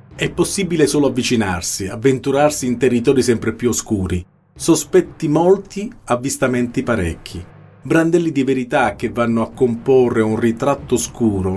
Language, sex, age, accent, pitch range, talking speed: Italian, male, 40-59, native, 105-145 Hz, 125 wpm